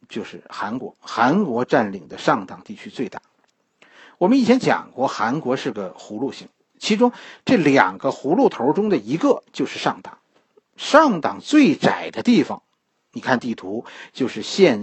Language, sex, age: Chinese, male, 50-69